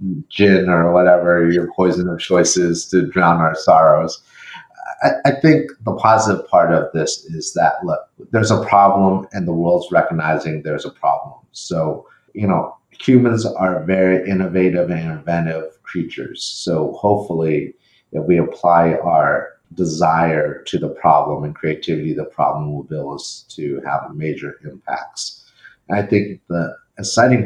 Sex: male